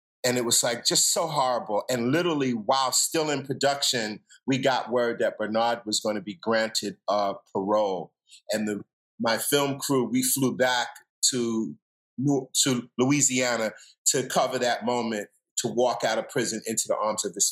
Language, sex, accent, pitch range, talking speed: English, male, American, 120-165 Hz, 175 wpm